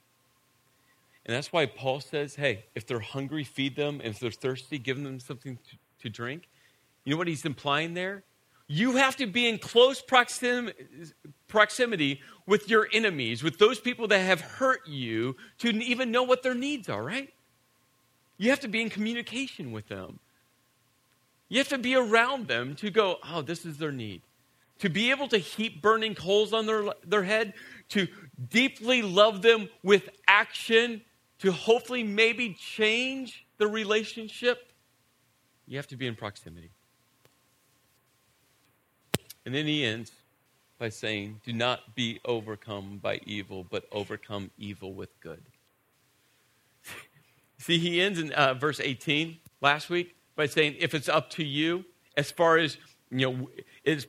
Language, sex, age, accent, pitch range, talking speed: English, male, 40-59, American, 130-210 Hz, 155 wpm